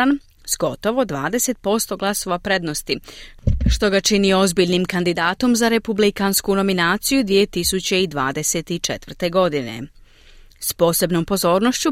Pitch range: 165-235 Hz